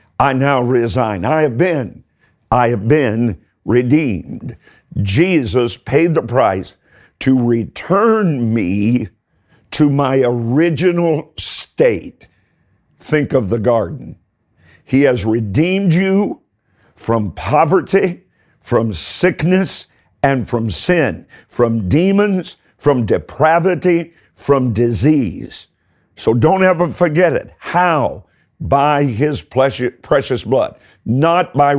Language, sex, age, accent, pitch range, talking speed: English, male, 50-69, American, 120-160 Hz, 105 wpm